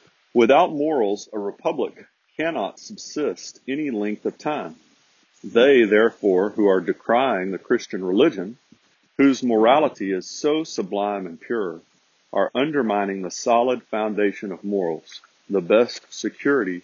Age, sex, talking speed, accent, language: 50-69, male, 125 wpm, American, English